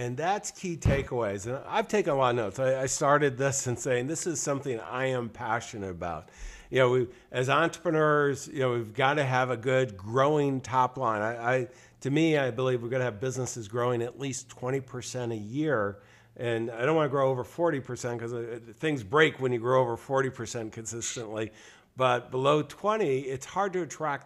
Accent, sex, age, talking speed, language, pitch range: American, male, 50-69, 195 wpm, English, 120-150 Hz